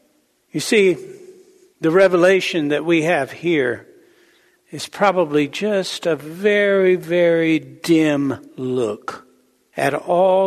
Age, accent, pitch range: 60-79, American, 150-250 Hz